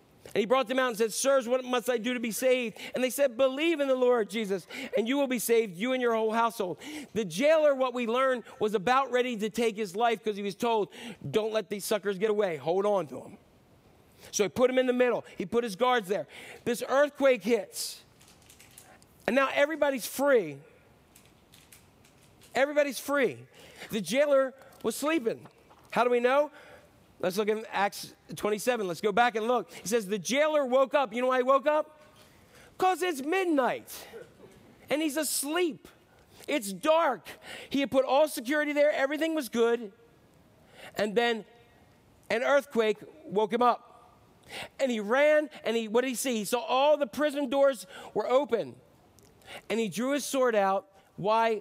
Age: 40-59